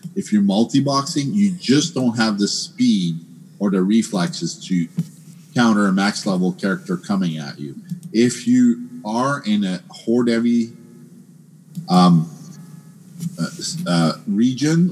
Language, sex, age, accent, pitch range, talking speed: English, male, 50-69, American, 120-180 Hz, 120 wpm